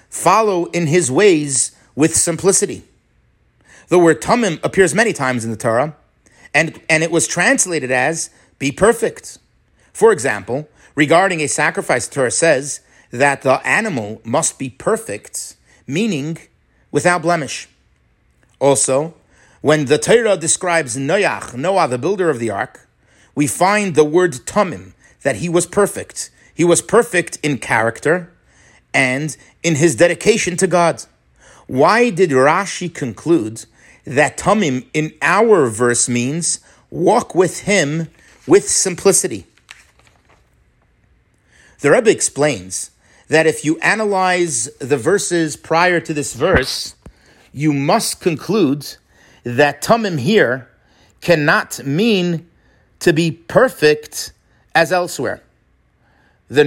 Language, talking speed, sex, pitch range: English, 120 wpm, male, 135-180 Hz